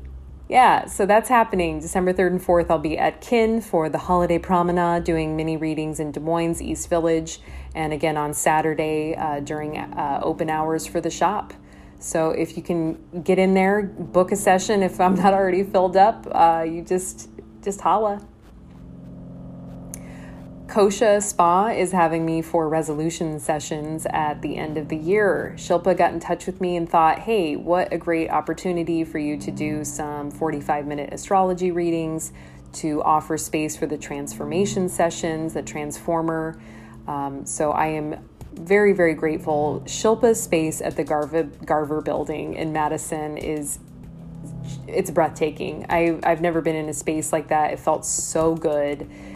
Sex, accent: female, American